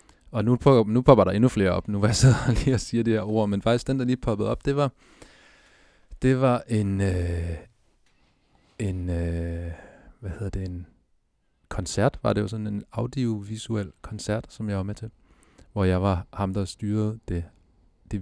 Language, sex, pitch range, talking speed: Danish, male, 90-110 Hz, 190 wpm